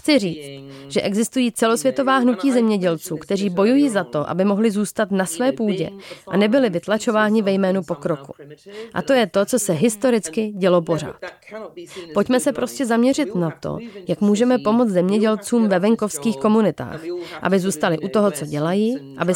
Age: 30-49